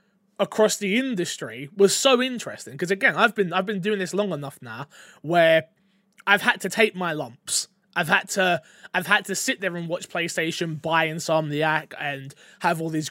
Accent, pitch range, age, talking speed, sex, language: British, 175-235 Hz, 20-39, 190 wpm, male, English